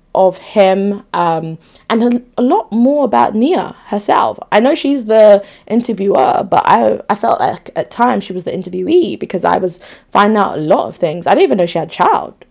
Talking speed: 210 wpm